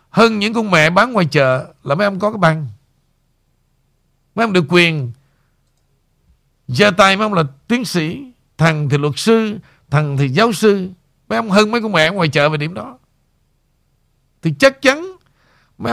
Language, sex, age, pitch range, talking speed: Vietnamese, male, 60-79, 135-220 Hz, 175 wpm